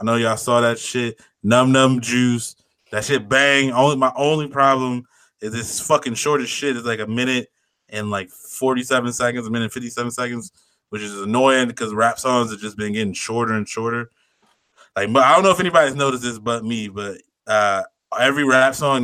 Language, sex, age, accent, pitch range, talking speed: English, male, 20-39, American, 105-125 Hz, 200 wpm